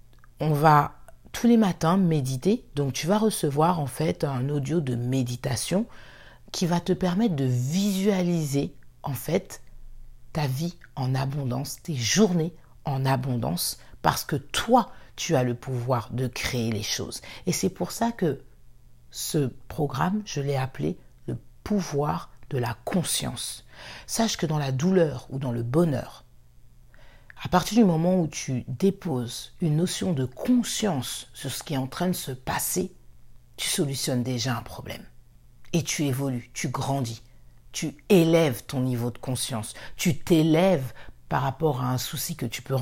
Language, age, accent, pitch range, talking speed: French, 50-69, French, 125-170 Hz, 160 wpm